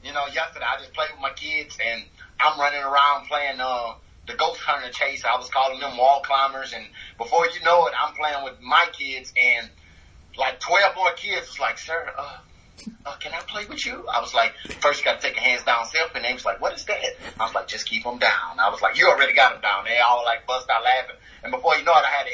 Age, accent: 30-49, American